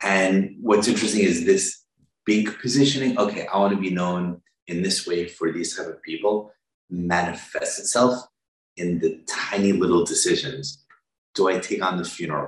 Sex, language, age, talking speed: male, English, 30-49, 165 wpm